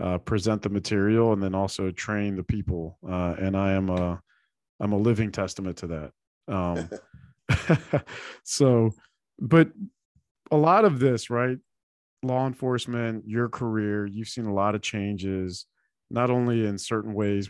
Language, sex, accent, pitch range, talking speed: English, male, American, 95-115 Hz, 150 wpm